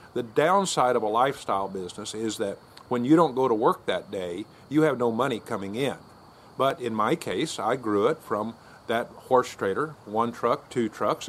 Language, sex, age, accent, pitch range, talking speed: English, male, 50-69, American, 110-135 Hz, 195 wpm